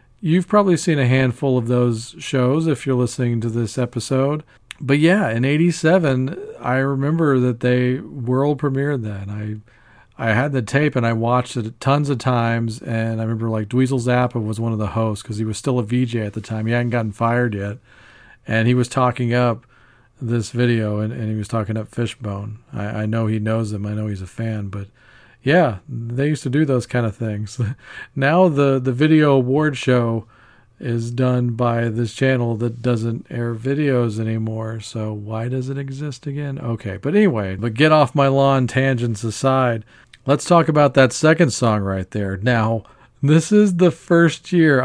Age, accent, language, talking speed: 40-59, American, English, 190 wpm